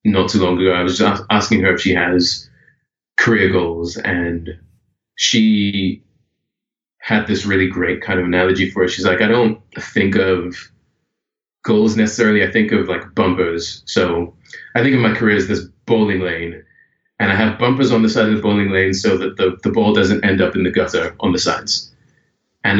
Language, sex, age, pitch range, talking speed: English, male, 20-39, 90-110 Hz, 190 wpm